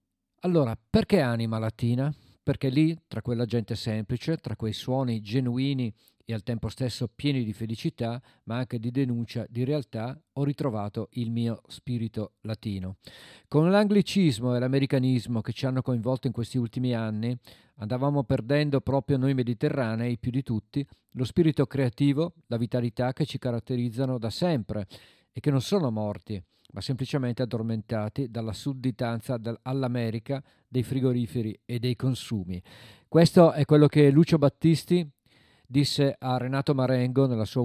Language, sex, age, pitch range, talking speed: Italian, male, 50-69, 115-135 Hz, 145 wpm